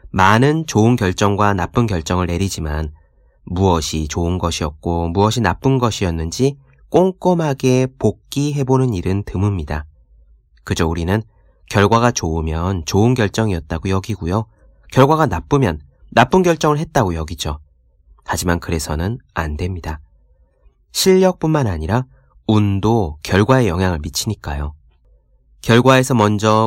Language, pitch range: Korean, 80-125 Hz